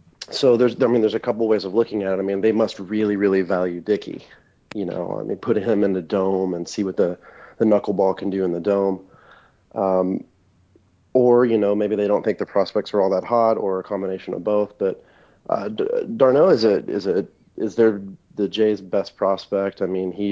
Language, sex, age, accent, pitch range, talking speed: English, male, 30-49, American, 95-110 Hz, 225 wpm